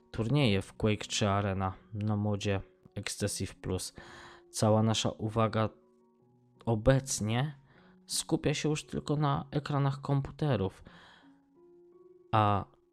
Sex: male